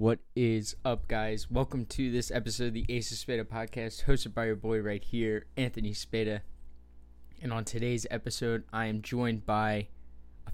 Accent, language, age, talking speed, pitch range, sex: American, English, 10-29, 175 wpm, 100-125 Hz, male